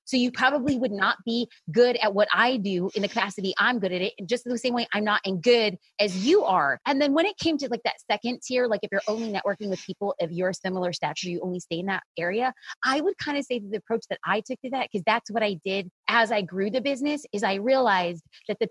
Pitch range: 195-250 Hz